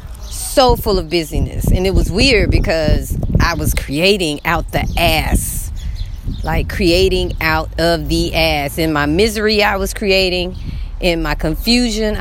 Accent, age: American, 30-49